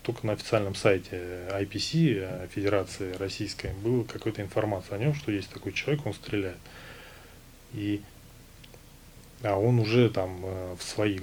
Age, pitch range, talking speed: 30-49, 95-115 Hz, 130 wpm